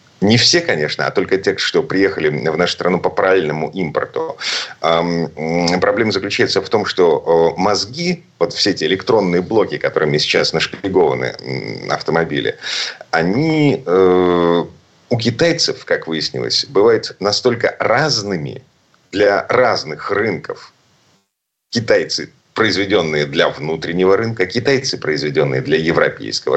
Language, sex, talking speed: Russian, male, 110 wpm